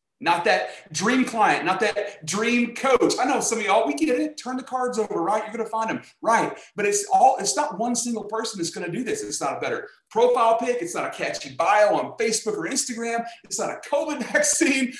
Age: 40-59